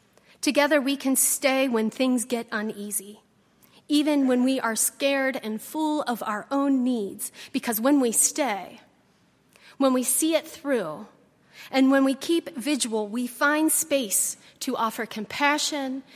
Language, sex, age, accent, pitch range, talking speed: English, female, 30-49, American, 225-280 Hz, 145 wpm